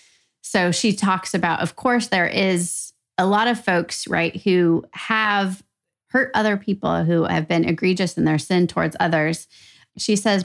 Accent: American